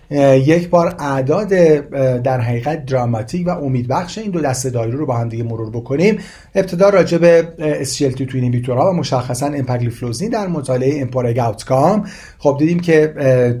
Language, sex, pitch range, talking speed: Persian, male, 125-175 Hz, 150 wpm